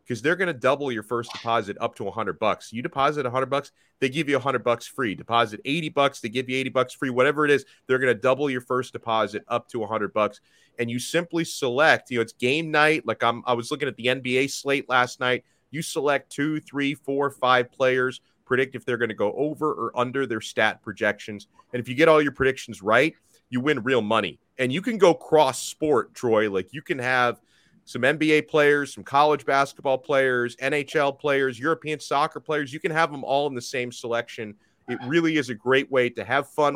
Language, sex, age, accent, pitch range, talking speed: English, male, 30-49, American, 120-145 Hz, 220 wpm